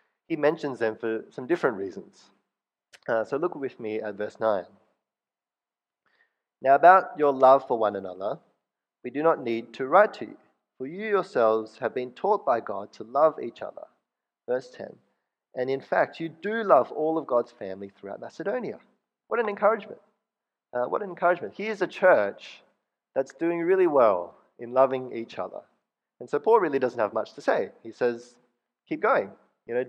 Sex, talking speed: male, 180 wpm